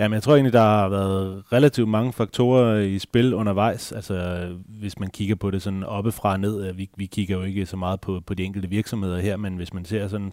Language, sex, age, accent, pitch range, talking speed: Danish, male, 30-49, native, 95-115 Hz, 245 wpm